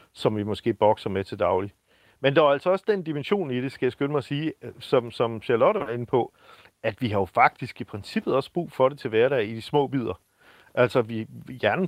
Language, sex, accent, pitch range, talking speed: Danish, male, native, 110-135 Hz, 240 wpm